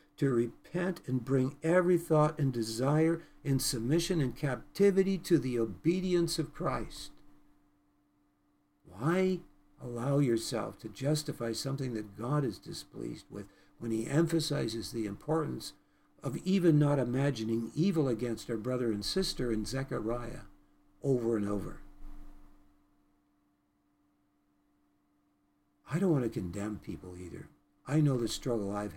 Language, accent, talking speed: English, American, 125 wpm